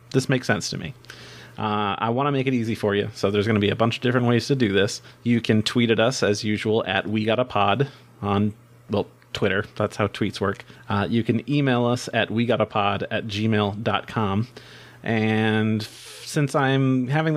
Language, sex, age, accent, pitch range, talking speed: English, male, 30-49, American, 110-130 Hz, 210 wpm